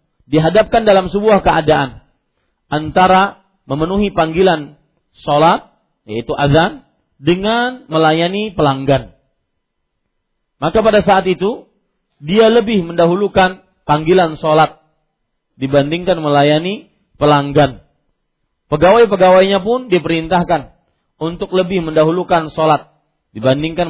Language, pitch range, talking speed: Malay, 150-200 Hz, 85 wpm